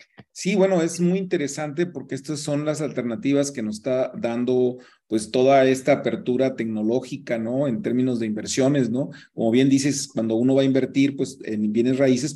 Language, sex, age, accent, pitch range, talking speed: Spanish, male, 40-59, Mexican, 130-160 Hz, 180 wpm